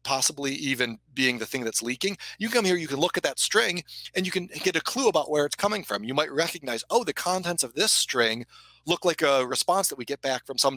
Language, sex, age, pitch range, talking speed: English, male, 40-59, 120-170 Hz, 255 wpm